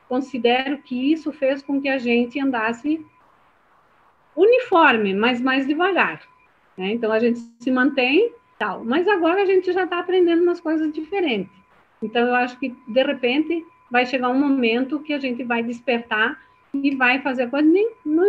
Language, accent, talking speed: Portuguese, Brazilian, 170 wpm